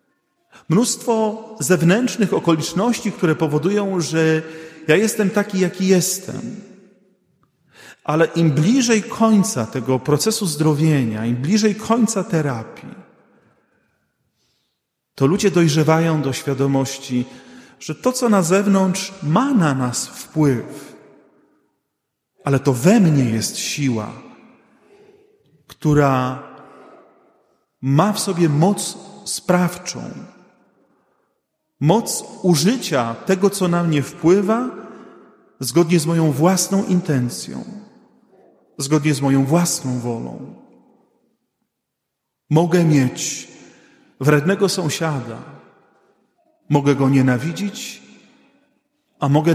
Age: 40-59